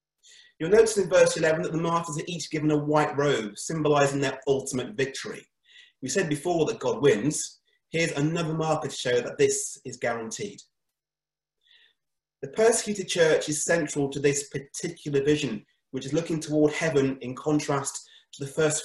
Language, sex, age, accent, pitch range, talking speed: English, male, 30-49, British, 140-175 Hz, 165 wpm